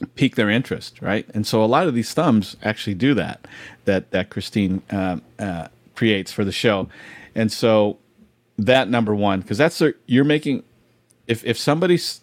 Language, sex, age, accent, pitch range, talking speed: English, male, 40-59, American, 100-120 Hz, 175 wpm